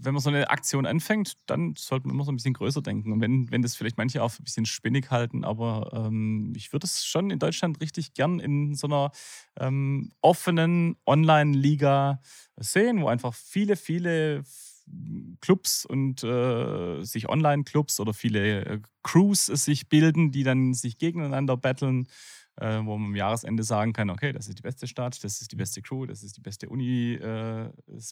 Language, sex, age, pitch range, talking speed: German, male, 30-49, 115-145 Hz, 180 wpm